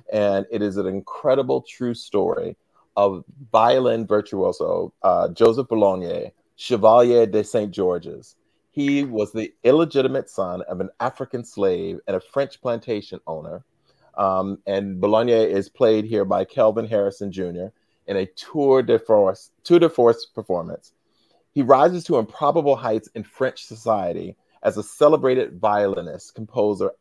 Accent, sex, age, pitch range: American, male, 40-59, 100-135 Hz